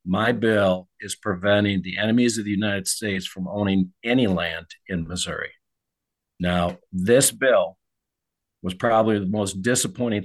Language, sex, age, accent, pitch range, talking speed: English, male, 50-69, American, 95-125 Hz, 140 wpm